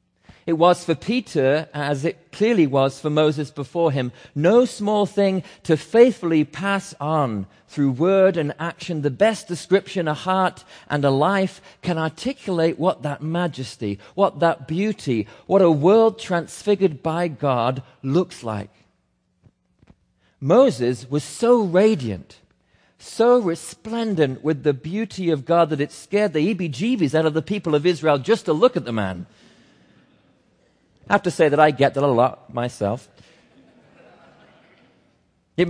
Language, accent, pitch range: English, British, 140-185 Hz